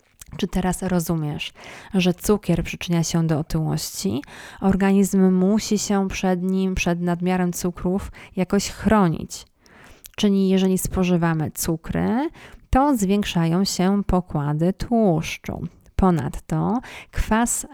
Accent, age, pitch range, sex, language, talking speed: native, 20-39, 165-190 Hz, female, Polish, 100 wpm